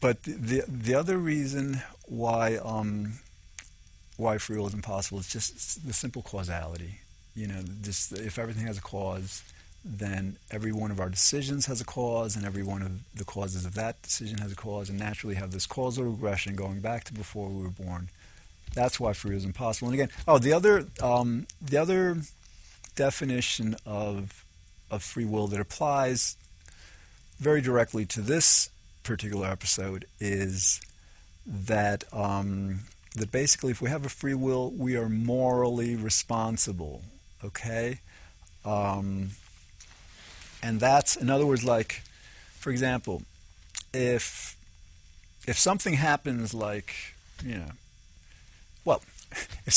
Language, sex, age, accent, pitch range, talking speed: English, male, 40-59, American, 90-125 Hz, 145 wpm